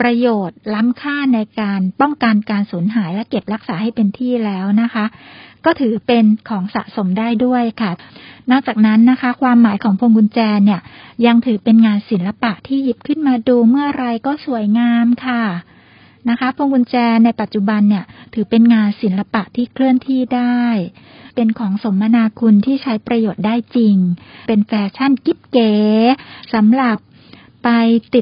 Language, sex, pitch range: Thai, female, 210-250 Hz